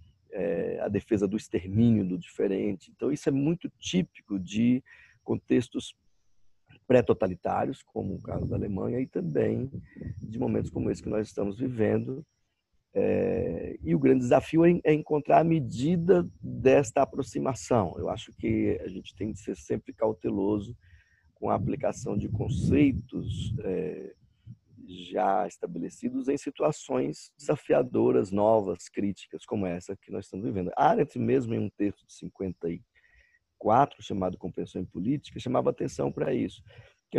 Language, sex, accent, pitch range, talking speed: Portuguese, male, Brazilian, 100-150 Hz, 140 wpm